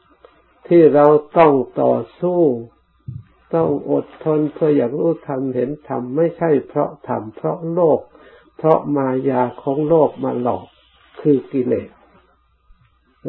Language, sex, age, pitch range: Thai, male, 60-79, 125-150 Hz